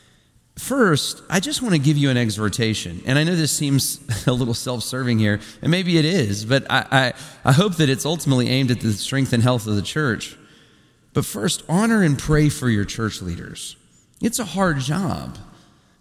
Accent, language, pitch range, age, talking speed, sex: American, English, 115-155 Hz, 40-59, 200 wpm, male